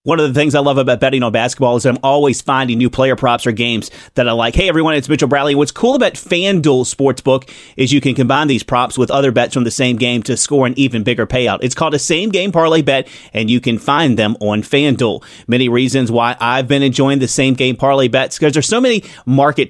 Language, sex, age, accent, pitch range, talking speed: English, male, 30-49, American, 125-150 Hz, 240 wpm